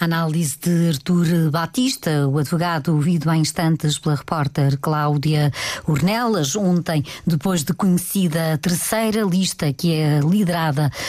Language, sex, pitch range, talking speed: Portuguese, female, 160-190 Hz, 125 wpm